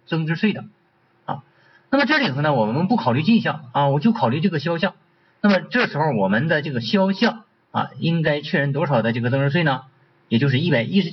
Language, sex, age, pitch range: Chinese, male, 50-69, 140-215 Hz